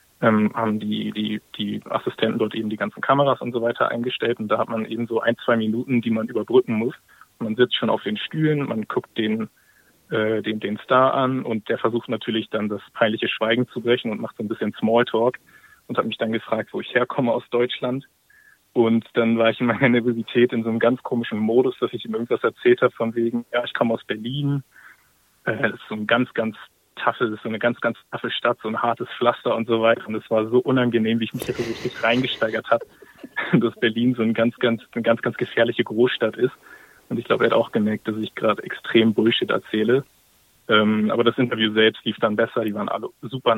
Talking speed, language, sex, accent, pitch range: 225 wpm, German, male, German, 110-125 Hz